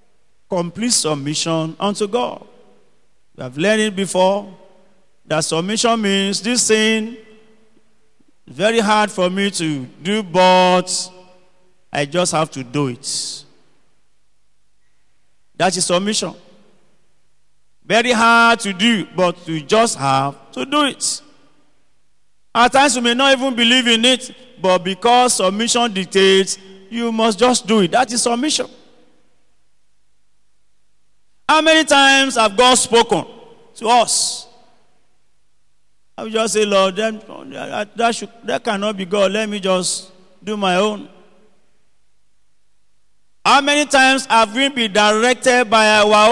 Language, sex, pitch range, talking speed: English, male, 185-235 Hz, 125 wpm